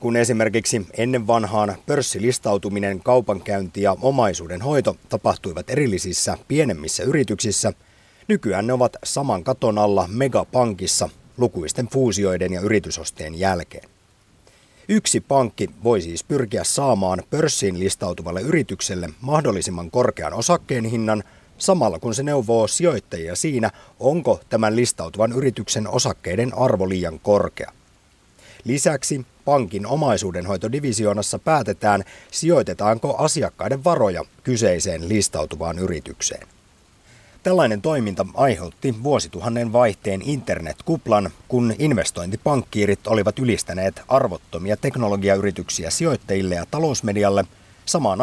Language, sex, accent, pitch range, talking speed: Finnish, male, native, 95-125 Hz, 95 wpm